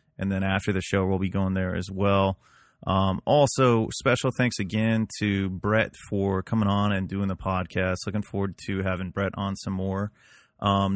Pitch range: 95-110 Hz